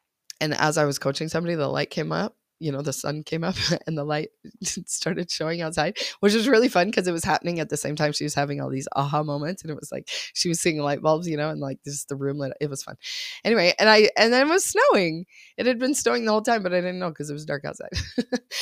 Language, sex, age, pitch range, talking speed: English, female, 20-39, 145-215 Hz, 275 wpm